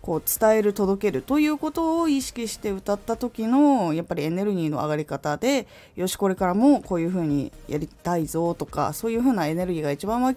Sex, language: female, Japanese